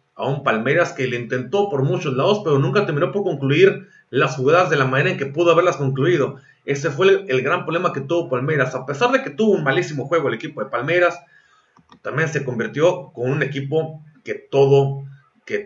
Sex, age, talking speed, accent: male, 40-59, 205 wpm, Mexican